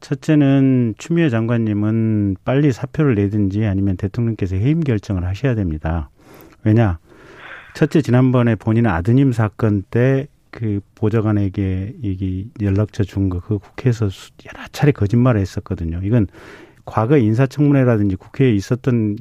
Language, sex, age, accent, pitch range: Korean, male, 40-59, native, 100-135 Hz